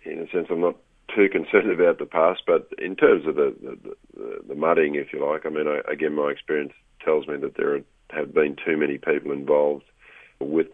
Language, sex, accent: English, male, Australian